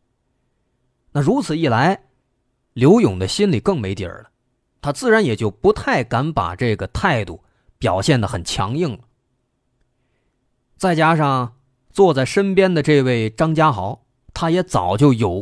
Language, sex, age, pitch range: Chinese, male, 30-49, 120-170 Hz